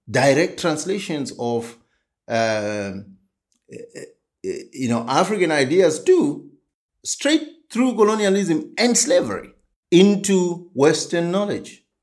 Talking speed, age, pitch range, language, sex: 85 wpm, 50-69, 125-200 Hz, English, male